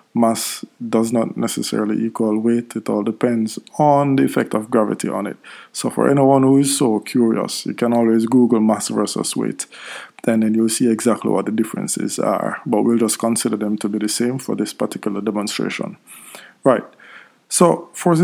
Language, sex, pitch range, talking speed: English, male, 110-130 Hz, 180 wpm